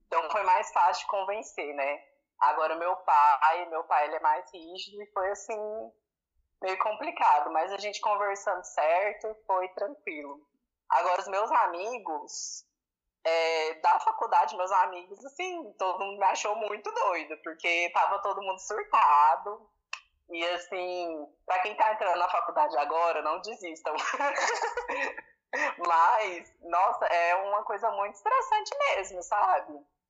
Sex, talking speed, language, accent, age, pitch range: female, 135 wpm, Portuguese, Brazilian, 20-39, 175-220 Hz